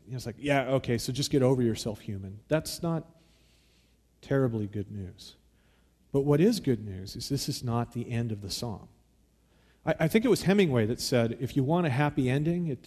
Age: 40-59